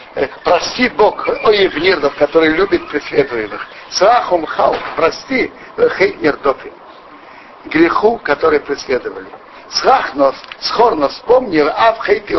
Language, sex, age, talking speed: Russian, male, 60-79, 95 wpm